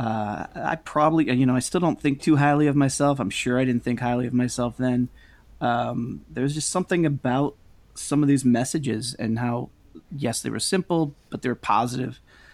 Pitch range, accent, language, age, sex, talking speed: 115-140 Hz, American, English, 30-49, male, 195 wpm